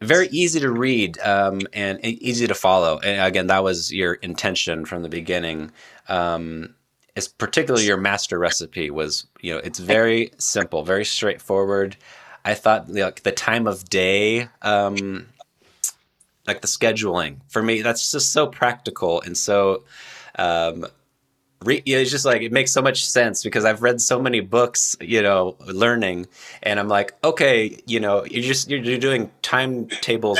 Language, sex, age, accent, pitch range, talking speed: English, male, 20-39, American, 95-120 Hz, 155 wpm